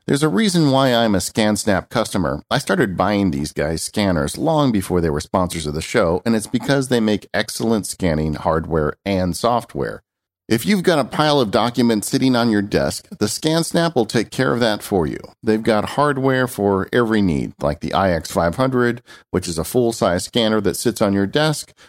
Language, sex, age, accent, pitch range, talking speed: English, male, 50-69, American, 90-120 Hz, 195 wpm